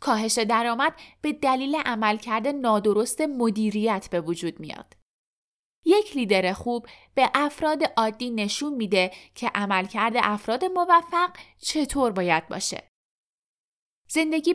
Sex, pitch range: female, 205-285 Hz